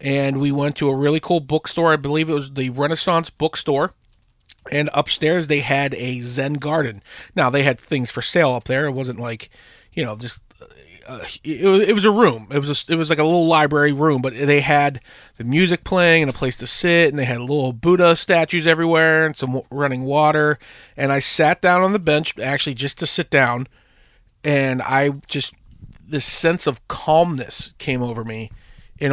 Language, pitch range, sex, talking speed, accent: English, 130-165 Hz, male, 195 wpm, American